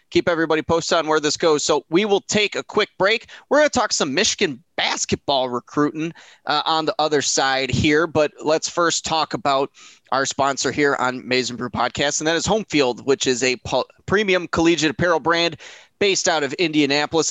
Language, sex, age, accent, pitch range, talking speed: English, male, 20-39, American, 130-165 Hz, 190 wpm